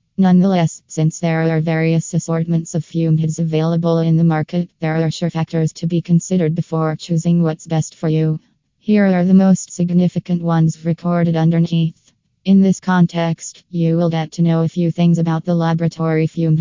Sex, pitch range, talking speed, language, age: female, 160-175 Hz, 175 wpm, English, 20-39